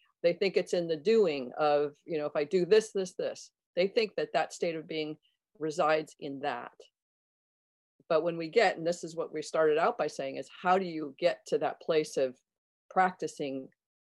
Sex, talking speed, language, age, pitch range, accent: female, 205 wpm, English, 40-59, 155-200 Hz, American